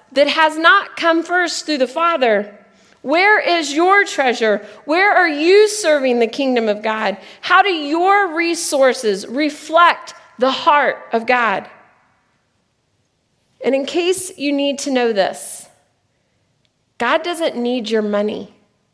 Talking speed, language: 135 wpm, English